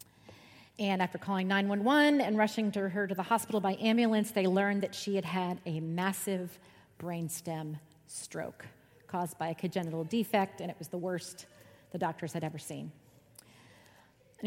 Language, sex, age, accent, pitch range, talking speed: English, female, 40-59, American, 160-210 Hz, 160 wpm